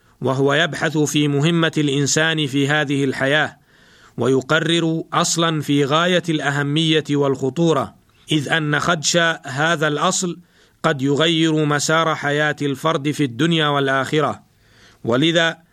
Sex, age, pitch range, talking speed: male, 50-69, 140-165 Hz, 105 wpm